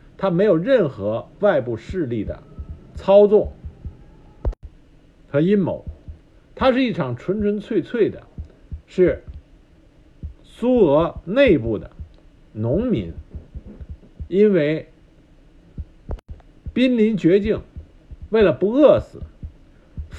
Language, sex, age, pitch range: Chinese, male, 60-79, 135-215 Hz